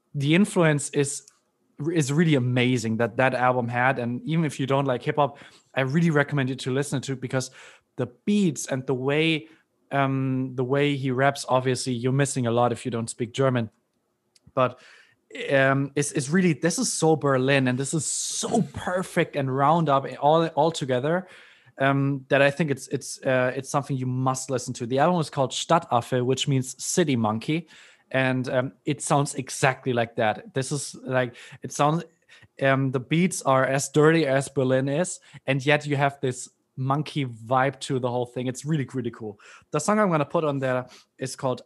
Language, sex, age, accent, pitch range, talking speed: English, male, 20-39, German, 130-145 Hz, 195 wpm